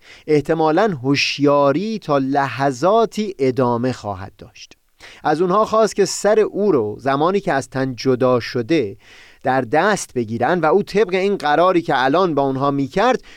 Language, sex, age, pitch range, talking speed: Persian, male, 30-49, 135-195 Hz, 150 wpm